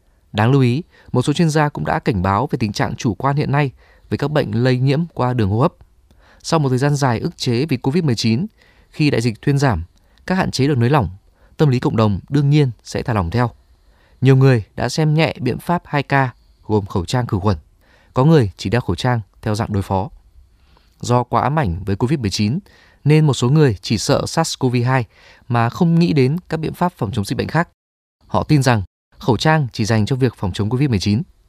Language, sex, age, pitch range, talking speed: Vietnamese, male, 20-39, 100-145 Hz, 225 wpm